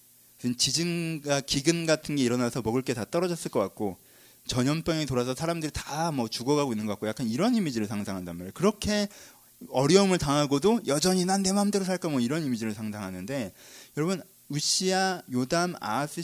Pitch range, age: 120-180 Hz, 30-49